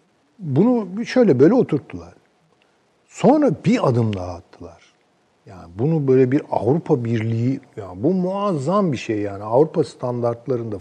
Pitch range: 110-145 Hz